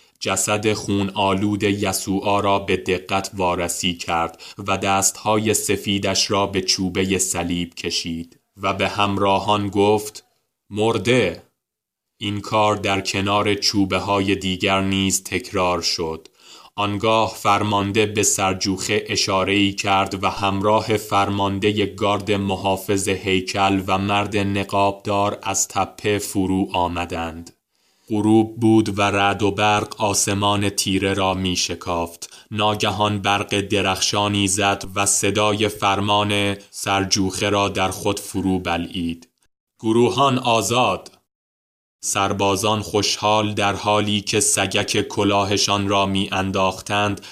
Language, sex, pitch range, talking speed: Persian, male, 95-105 Hz, 110 wpm